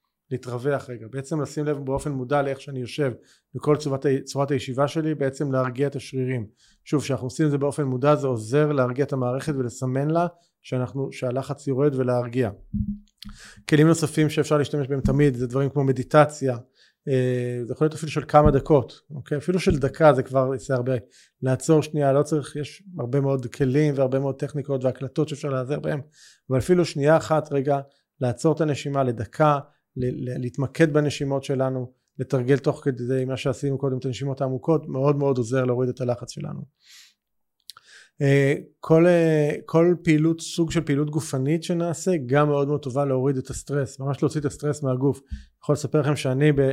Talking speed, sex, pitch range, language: 170 wpm, male, 130-150 Hz, Hebrew